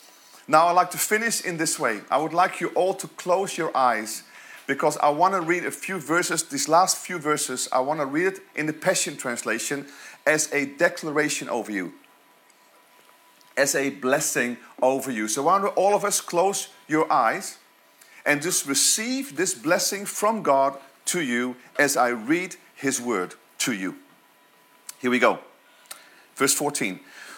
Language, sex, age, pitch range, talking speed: English, male, 40-59, 155-235 Hz, 170 wpm